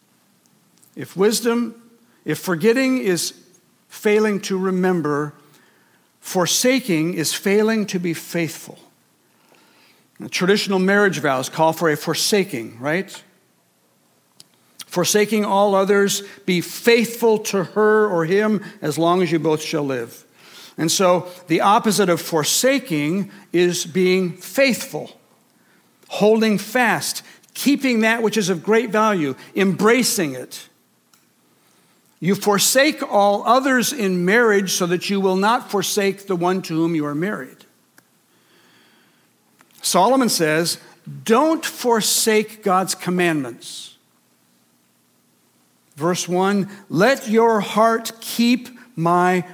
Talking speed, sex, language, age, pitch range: 110 wpm, male, English, 60-79, 170-220 Hz